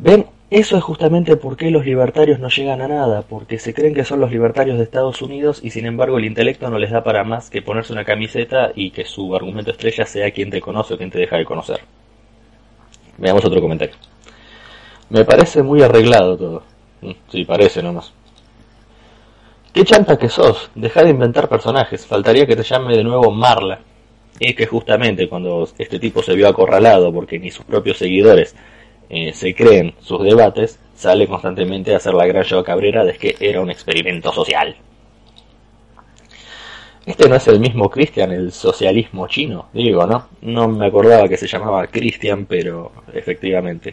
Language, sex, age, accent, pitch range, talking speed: Spanish, male, 20-39, Argentinian, 110-145 Hz, 180 wpm